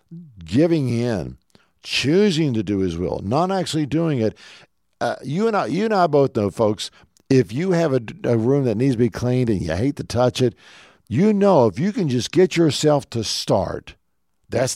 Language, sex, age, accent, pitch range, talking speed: English, male, 50-69, American, 115-160 Hz, 200 wpm